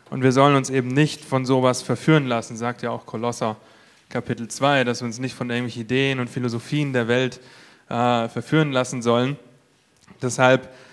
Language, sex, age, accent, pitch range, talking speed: German, male, 30-49, German, 120-140 Hz, 175 wpm